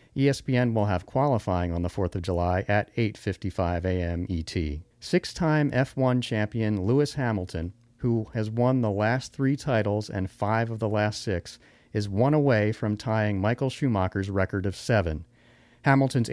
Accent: American